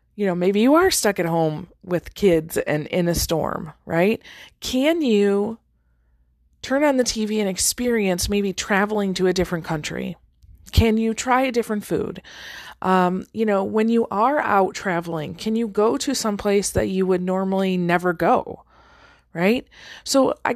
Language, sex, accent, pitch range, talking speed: English, female, American, 180-225 Hz, 165 wpm